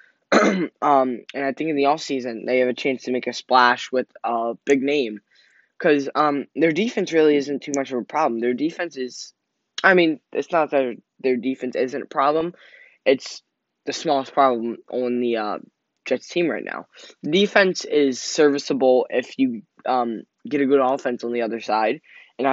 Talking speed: 185 wpm